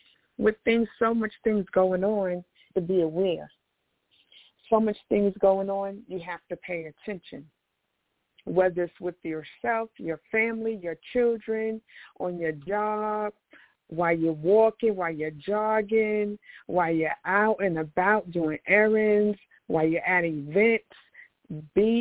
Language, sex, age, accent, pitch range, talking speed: English, female, 50-69, American, 175-220 Hz, 135 wpm